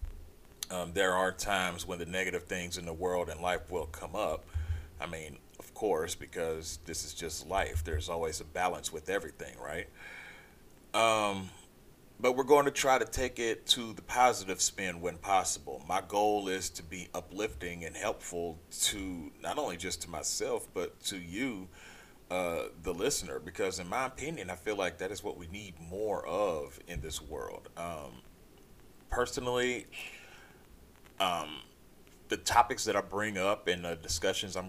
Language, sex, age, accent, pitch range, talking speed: English, male, 40-59, American, 85-100 Hz, 170 wpm